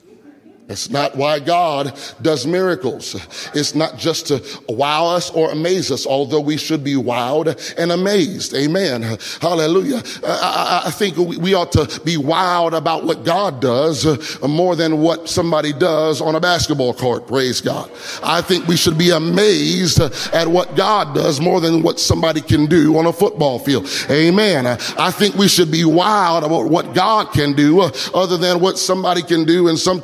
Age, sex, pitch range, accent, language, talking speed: 30-49, male, 150-190 Hz, American, English, 175 wpm